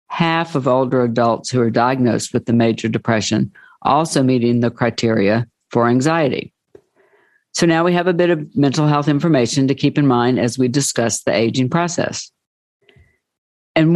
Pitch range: 120-145 Hz